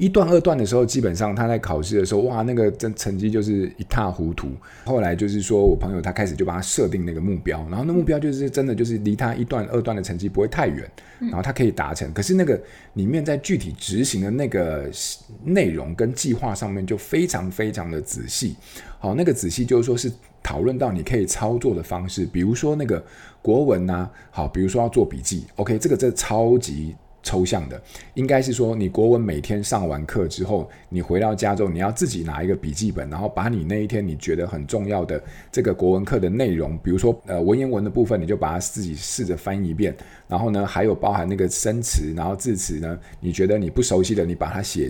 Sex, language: male, Chinese